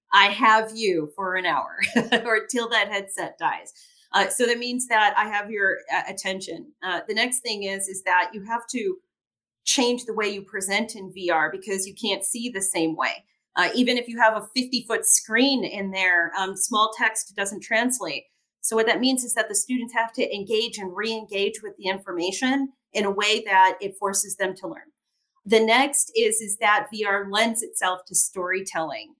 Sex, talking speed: female, 195 wpm